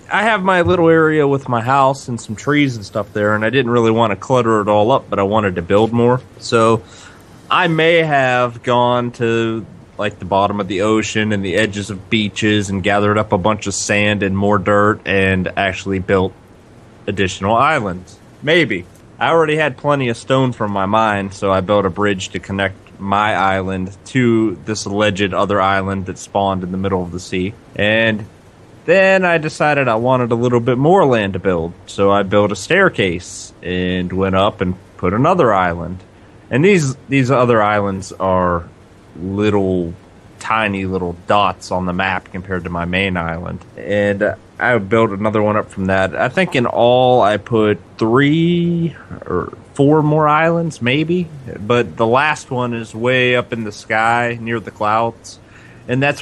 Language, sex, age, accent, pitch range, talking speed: English, male, 20-39, American, 95-125 Hz, 185 wpm